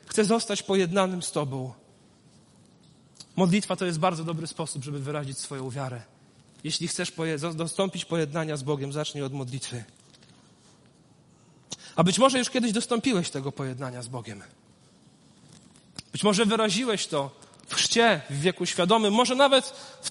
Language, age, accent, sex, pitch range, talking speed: Polish, 40-59, native, male, 140-190 Hz, 135 wpm